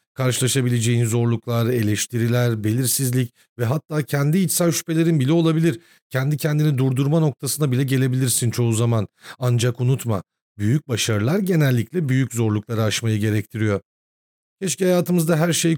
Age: 40-59